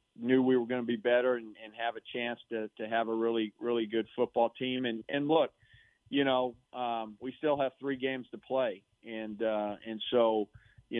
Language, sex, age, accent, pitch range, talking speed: English, male, 40-59, American, 110-125 Hz, 215 wpm